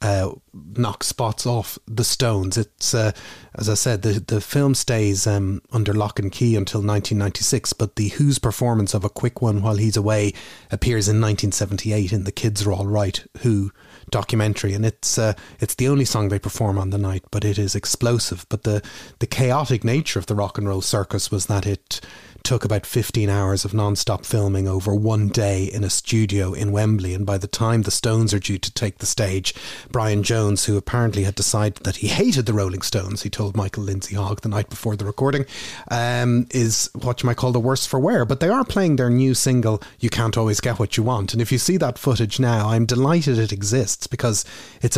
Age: 30-49